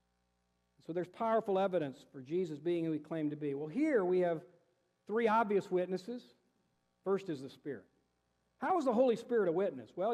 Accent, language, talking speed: American, English, 185 wpm